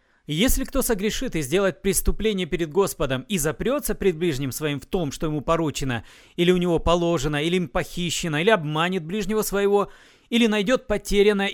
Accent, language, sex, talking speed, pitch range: native, Russian, male, 165 wpm, 155-205 Hz